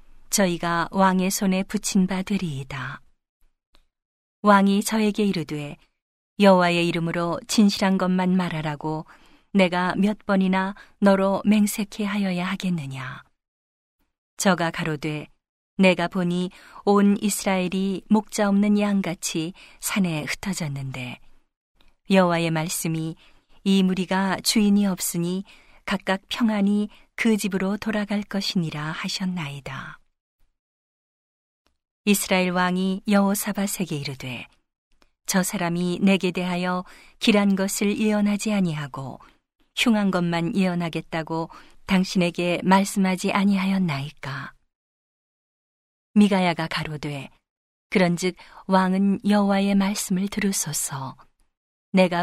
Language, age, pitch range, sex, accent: Korean, 40-59, 170-200 Hz, female, native